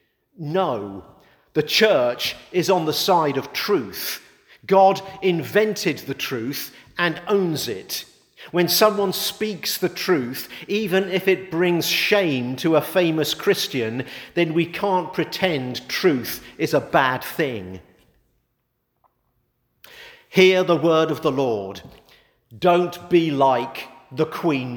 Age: 50-69